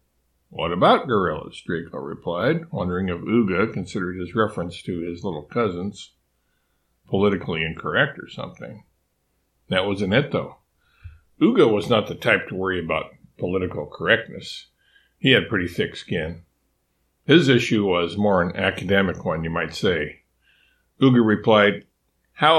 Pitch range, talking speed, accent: 70-105 Hz, 135 wpm, American